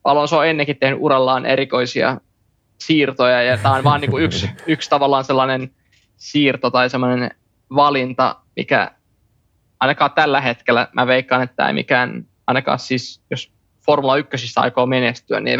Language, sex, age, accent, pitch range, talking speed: Finnish, male, 20-39, native, 120-135 Hz, 150 wpm